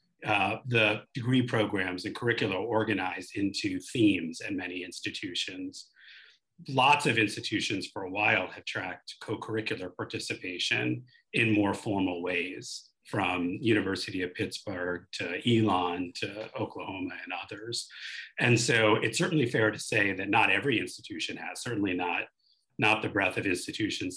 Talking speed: 135 wpm